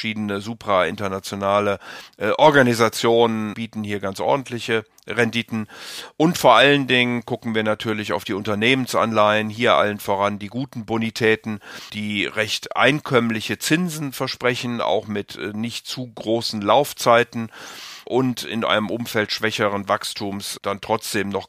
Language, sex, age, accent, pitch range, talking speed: German, male, 50-69, German, 100-115 Hz, 125 wpm